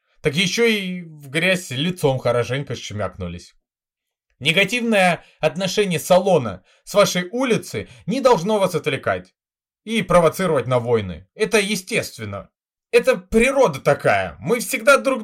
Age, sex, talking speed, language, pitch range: 20-39, male, 120 wpm, Russian, 130-210 Hz